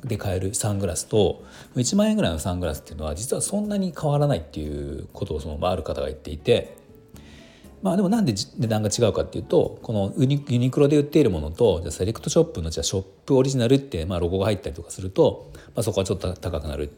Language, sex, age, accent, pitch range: Japanese, male, 40-59, native, 80-130 Hz